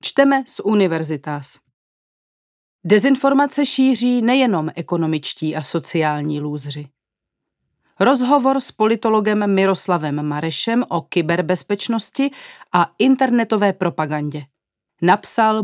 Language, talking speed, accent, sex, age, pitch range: Czech, 80 wpm, native, female, 40-59, 170-235 Hz